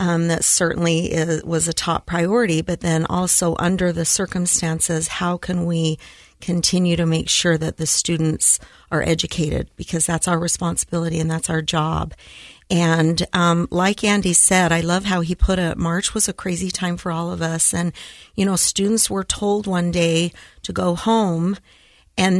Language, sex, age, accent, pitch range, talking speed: English, female, 50-69, American, 170-185 Hz, 175 wpm